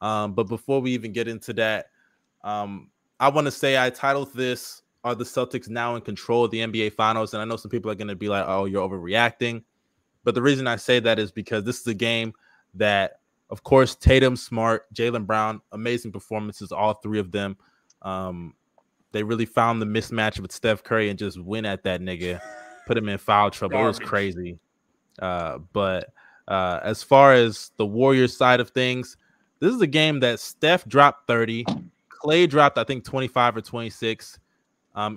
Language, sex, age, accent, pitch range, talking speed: English, male, 20-39, American, 105-125 Hz, 200 wpm